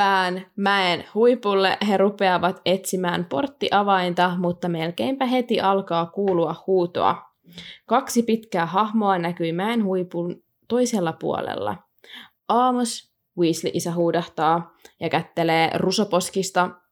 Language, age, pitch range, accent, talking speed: Finnish, 20-39, 170-205 Hz, native, 90 wpm